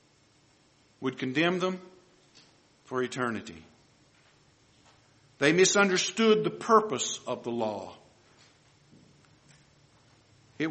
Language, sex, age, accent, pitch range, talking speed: English, male, 50-69, American, 135-170 Hz, 75 wpm